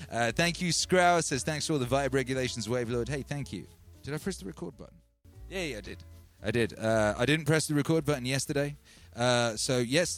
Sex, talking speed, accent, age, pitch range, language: male, 225 wpm, British, 30-49, 100-140 Hz, English